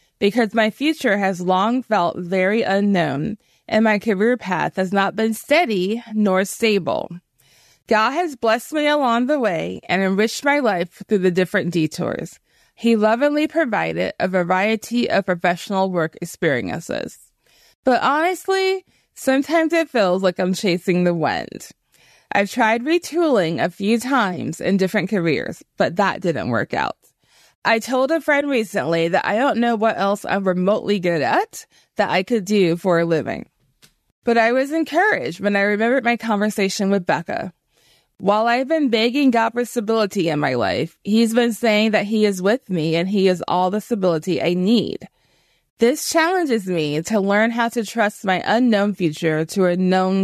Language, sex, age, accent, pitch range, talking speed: English, female, 20-39, American, 185-235 Hz, 165 wpm